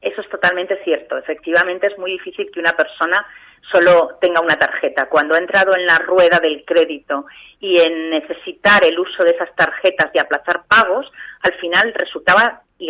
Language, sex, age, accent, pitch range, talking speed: Spanish, female, 30-49, Spanish, 165-215 Hz, 175 wpm